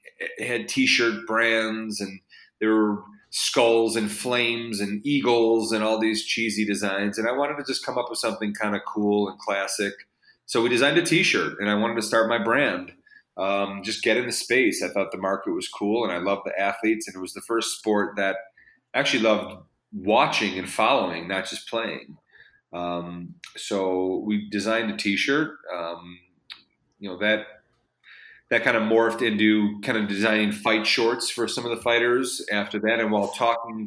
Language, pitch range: English, 100-115 Hz